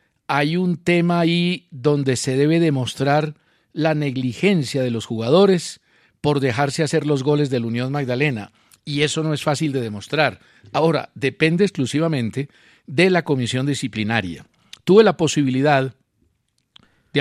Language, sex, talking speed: Spanish, male, 140 wpm